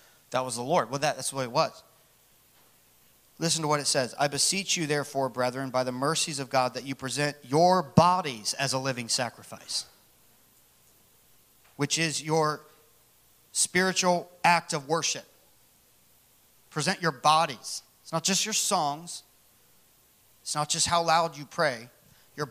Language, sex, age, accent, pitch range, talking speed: English, male, 40-59, American, 135-170 Hz, 150 wpm